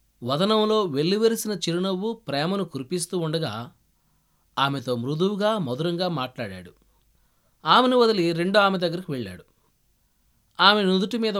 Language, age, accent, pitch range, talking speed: Telugu, 20-39, native, 145-200 Hz, 100 wpm